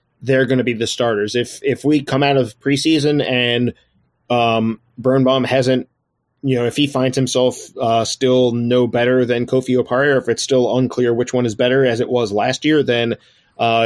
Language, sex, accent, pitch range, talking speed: English, male, American, 120-135 Hz, 200 wpm